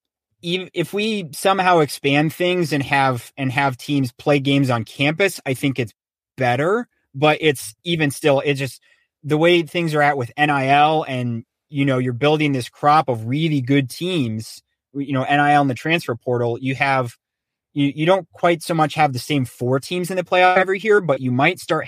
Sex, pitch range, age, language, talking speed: male, 120-150 Hz, 30-49, English, 195 wpm